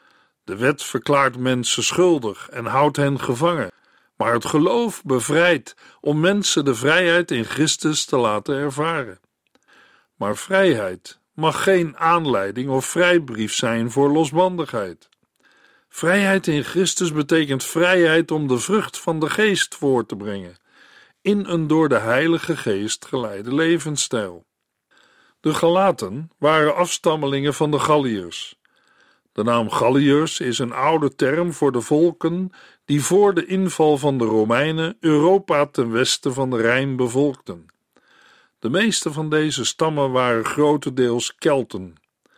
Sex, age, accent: male, 50-69, Dutch